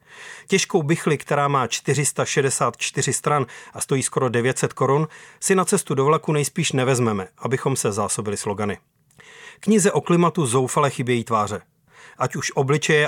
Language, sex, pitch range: Czech, male, 125-155 Hz